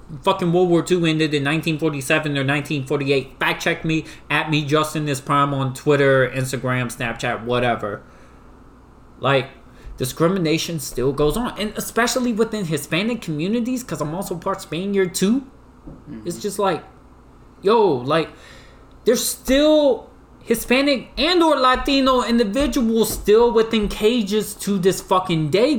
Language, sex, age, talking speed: English, male, 20-39, 135 wpm